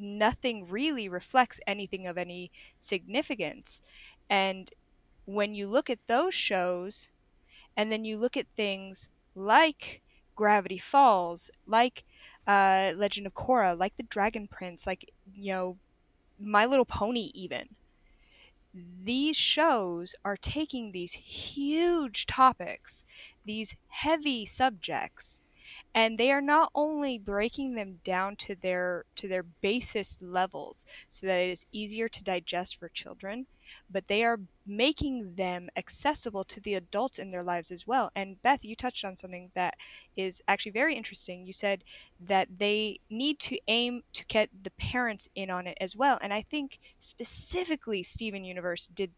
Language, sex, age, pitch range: English, female, 20-39, 185-245 Hz